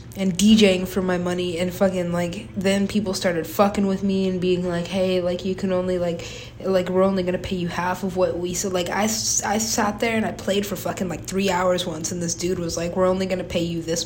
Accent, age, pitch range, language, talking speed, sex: American, 20-39, 170-195 Hz, English, 250 wpm, female